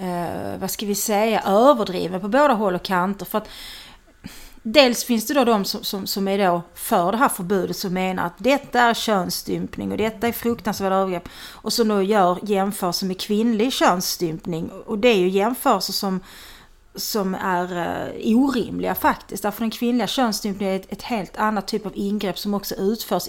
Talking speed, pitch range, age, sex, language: 185 wpm, 185-225 Hz, 30-49, female, English